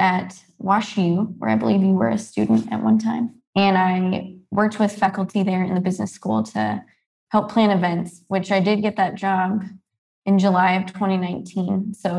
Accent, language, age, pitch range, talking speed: American, English, 20-39, 180-200 Hz, 180 wpm